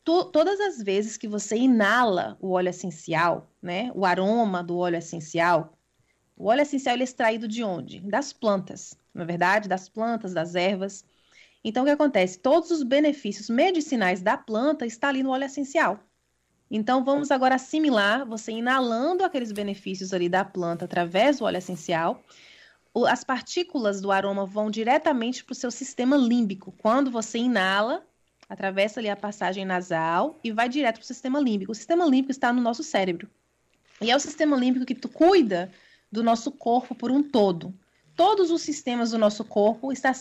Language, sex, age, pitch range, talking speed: Portuguese, female, 20-39, 195-270 Hz, 175 wpm